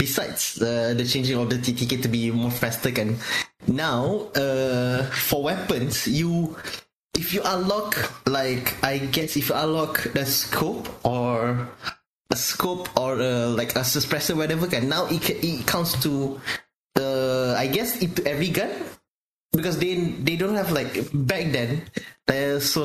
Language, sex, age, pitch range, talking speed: English, male, 20-39, 130-175 Hz, 160 wpm